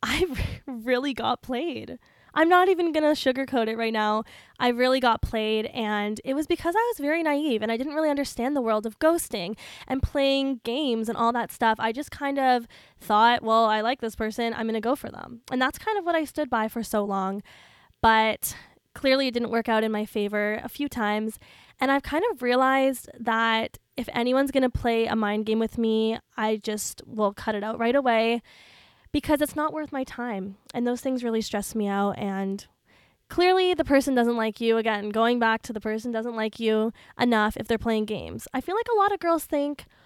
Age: 10-29